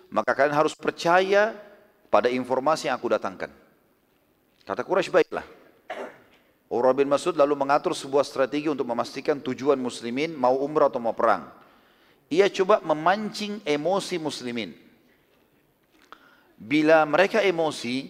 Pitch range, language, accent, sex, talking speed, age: 135-180 Hz, English, Indonesian, male, 120 wpm, 40-59